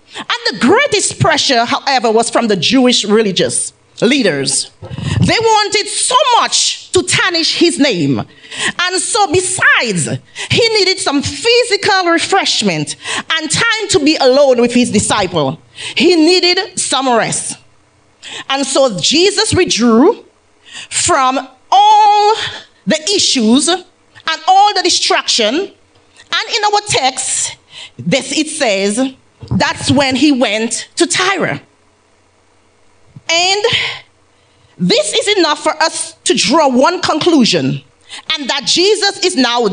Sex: female